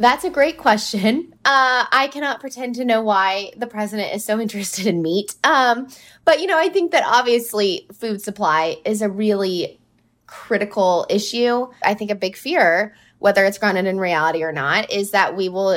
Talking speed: 185 wpm